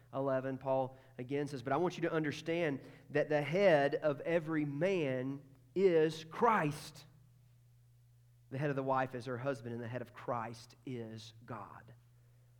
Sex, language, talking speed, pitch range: male, English, 155 wpm, 120-155 Hz